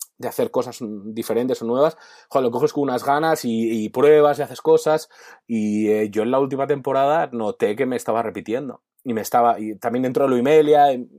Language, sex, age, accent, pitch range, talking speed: Spanish, male, 20-39, Spanish, 120-160 Hz, 205 wpm